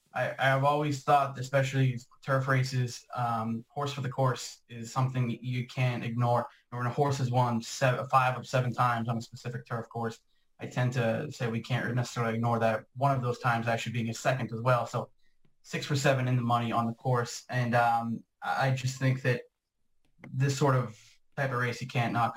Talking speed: 210 wpm